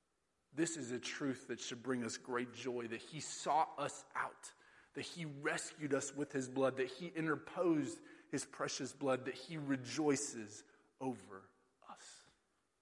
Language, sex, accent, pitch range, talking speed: English, male, American, 120-150 Hz, 155 wpm